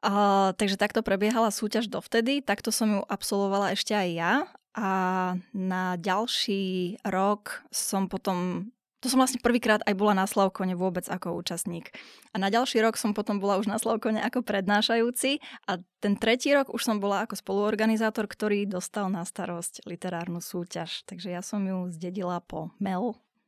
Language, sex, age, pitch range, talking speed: Slovak, female, 20-39, 190-225 Hz, 165 wpm